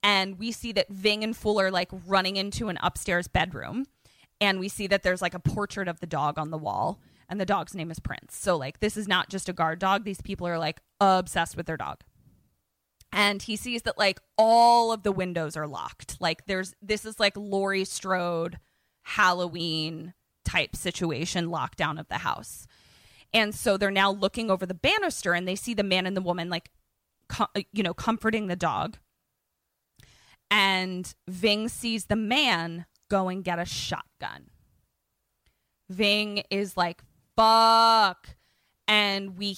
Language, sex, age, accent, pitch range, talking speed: English, female, 20-39, American, 175-220 Hz, 175 wpm